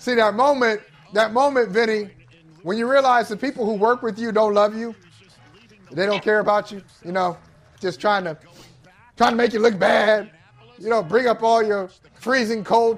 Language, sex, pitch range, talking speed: English, male, 185-265 Hz, 195 wpm